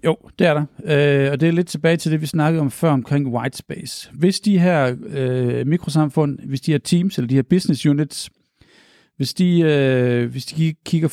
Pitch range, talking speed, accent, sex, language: 130-175 Hz, 205 wpm, native, male, Danish